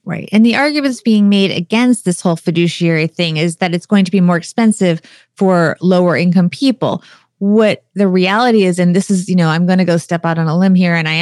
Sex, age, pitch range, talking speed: female, 30-49, 175-220 Hz, 235 wpm